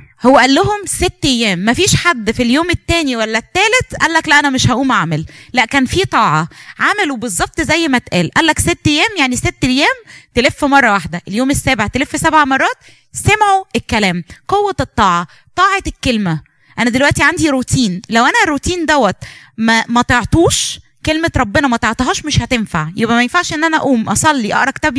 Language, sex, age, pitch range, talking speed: Arabic, female, 20-39, 225-330 Hz, 175 wpm